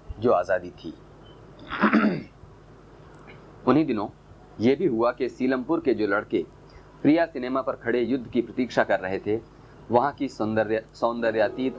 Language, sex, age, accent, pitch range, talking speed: Hindi, male, 30-49, native, 105-130 Hz, 135 wpm